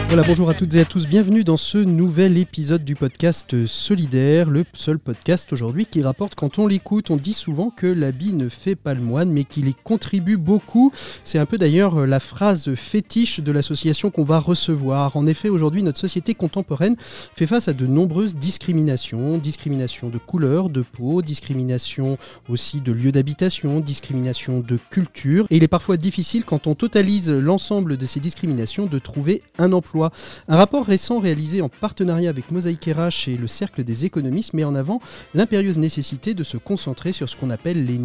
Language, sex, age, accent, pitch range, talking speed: French, male, 30-49, French, 140-190 Hz, 190 wpm